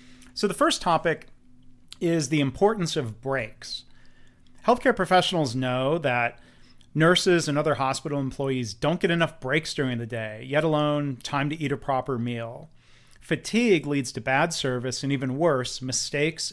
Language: English